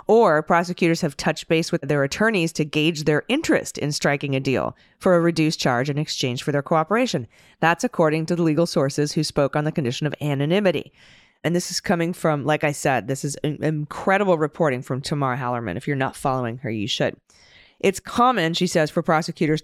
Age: 30-49